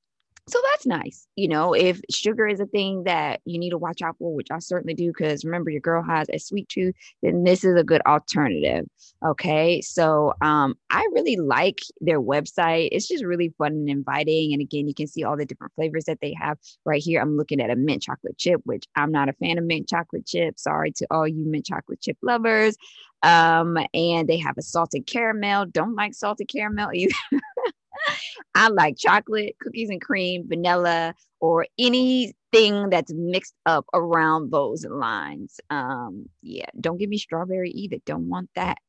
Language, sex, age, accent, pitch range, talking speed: English, female, 20-39, American, 155-200 Hz, 190 wpm